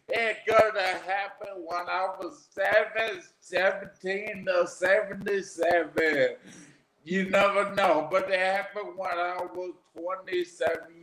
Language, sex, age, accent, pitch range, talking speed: English, male, 50-69, American, 180-215 Hz, 110 wpm